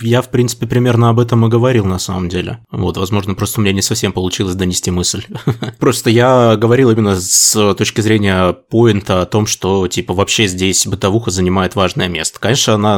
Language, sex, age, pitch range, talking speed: Russian, male, 20-39, 100-120 Hz, 190 wpm